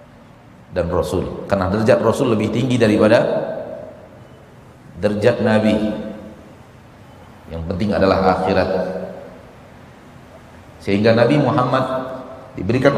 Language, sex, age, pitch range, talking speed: Indonesian, male, 40-59, 110-145 Hz, 85 wpm